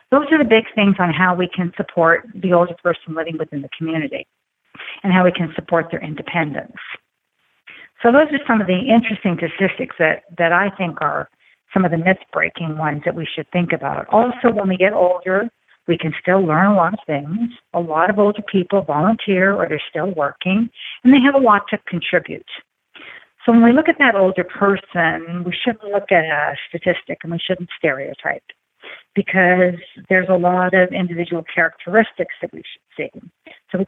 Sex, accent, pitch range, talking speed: female, American, 170-205 Hz, 190 wpm